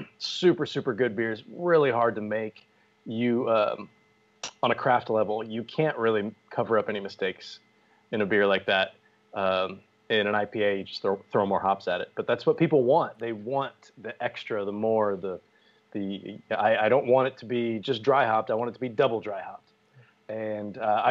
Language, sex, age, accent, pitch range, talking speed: English, male, 30-49, American, 110-140 Hz, 200 wpm